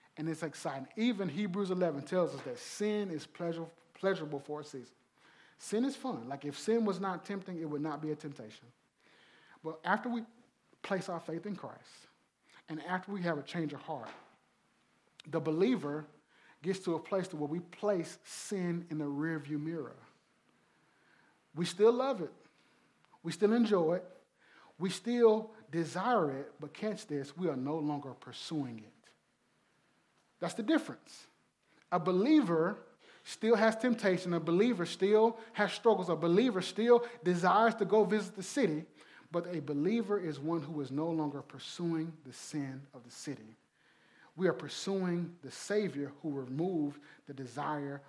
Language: English